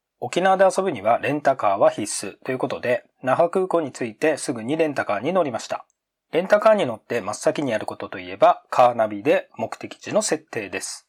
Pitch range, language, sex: 130-180 Hz, Japanese, male